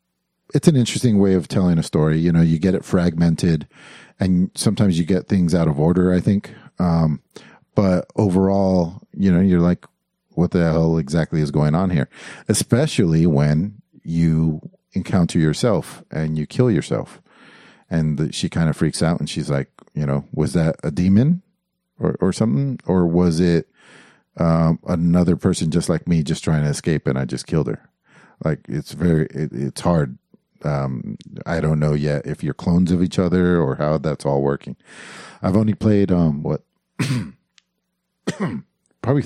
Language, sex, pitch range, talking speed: English, male, 80-105 Hz, 170 wpm